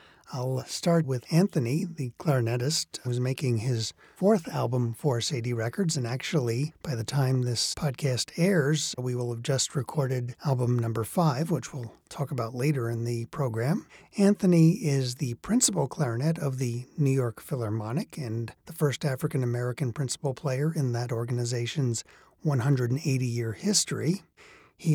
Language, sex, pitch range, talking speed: English, male, 120-155 Hz, 145 wpm